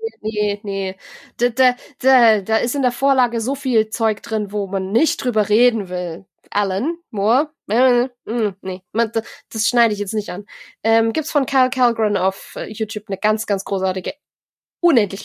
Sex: female